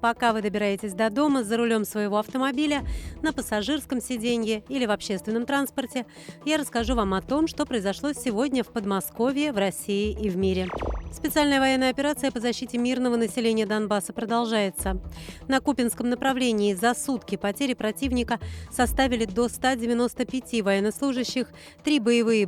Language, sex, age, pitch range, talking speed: Russian, female, 30-49, 215-260 Hz, 140 wpm